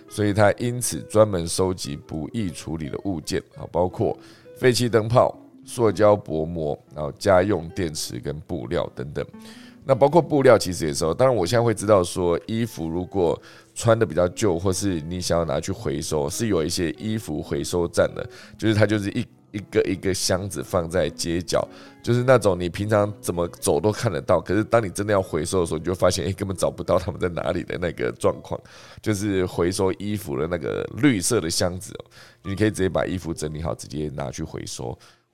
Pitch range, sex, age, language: 85-115 Hz, male, 20-39, Chinese